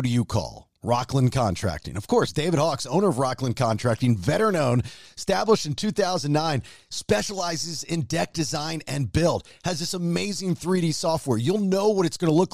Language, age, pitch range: English, 40-59, 125-175 Hz